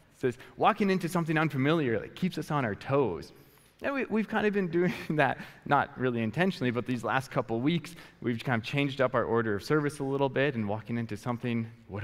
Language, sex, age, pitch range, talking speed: English, male, 20-39, 105-135 Hz, 220 wpm